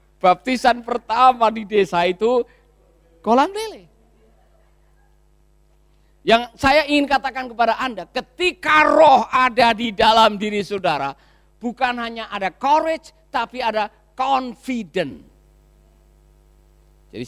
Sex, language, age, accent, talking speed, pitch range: male, Indonesian, 50-69, native, 95 wpm, 160-250 Hz